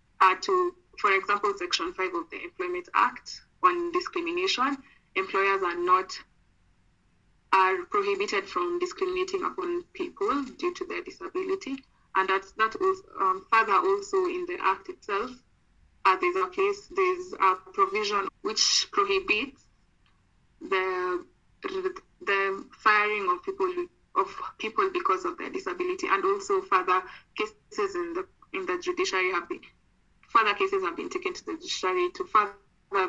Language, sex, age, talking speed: English, female, 20-39, 140 wpm